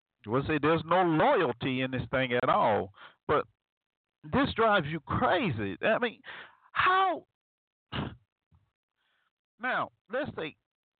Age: 50-69